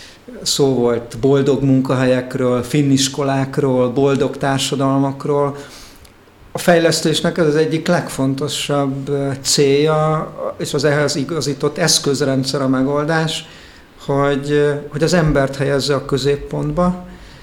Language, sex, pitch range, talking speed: Hungarian, male, 135-150 Hz, 95 wpm